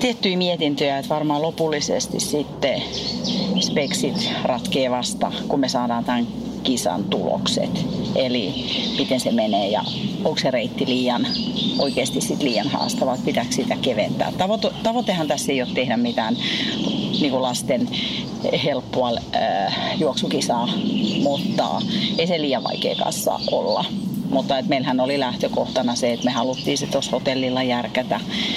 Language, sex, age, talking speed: Finnish, female, 40-59, 130 wpm